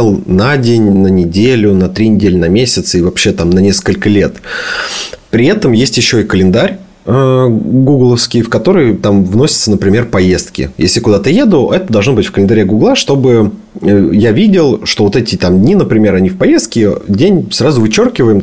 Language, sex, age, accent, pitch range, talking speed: Russian, male, 30-49, native, 95-120 Hz, 170 wpm